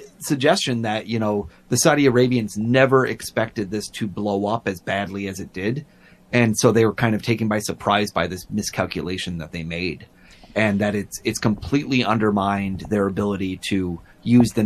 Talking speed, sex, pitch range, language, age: 180 wpm, male, 100-125 Hz, English, 30-49